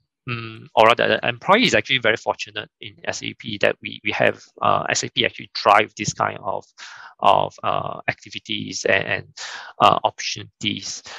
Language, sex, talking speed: Vietnamese, male, 155 wpm